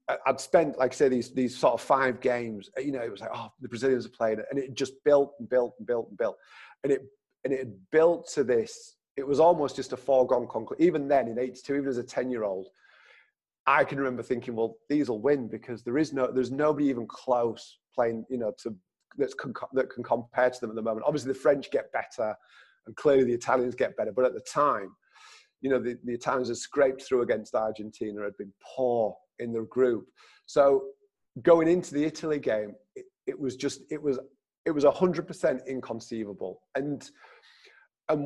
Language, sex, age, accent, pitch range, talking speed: English, male, 30-49, British, 120-155 Hz, 215 wpm